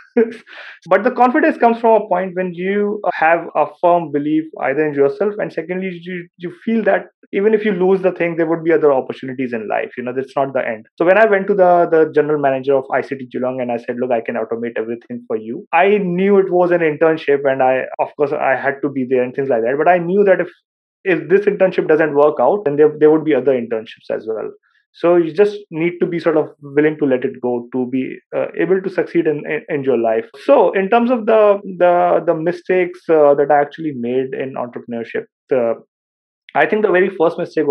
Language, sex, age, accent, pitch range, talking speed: English, male, 20-39, Indian, 140-185 Hz, 235 wpm